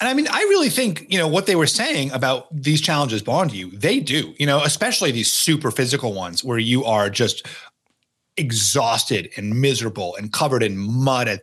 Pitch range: 125-165 Hz